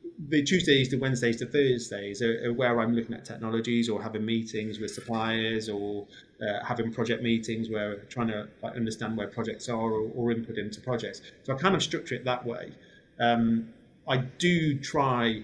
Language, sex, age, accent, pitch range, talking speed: English, male, 30-49, British, 110-125 Hz, 185 wpm